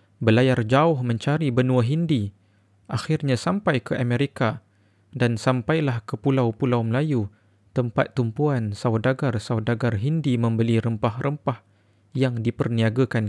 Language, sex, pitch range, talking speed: Malay, male, 105-135 Hz, 100 wpm